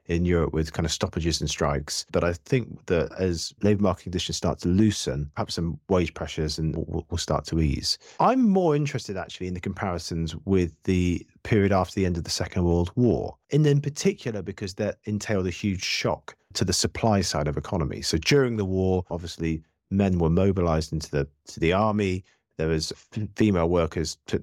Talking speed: 195 wpm